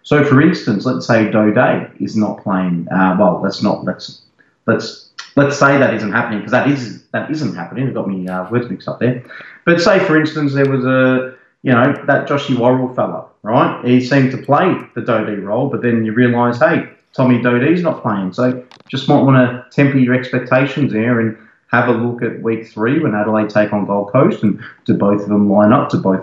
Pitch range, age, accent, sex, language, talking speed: 105-130 Hz, 30-49, Australian, male, English, 215 wpm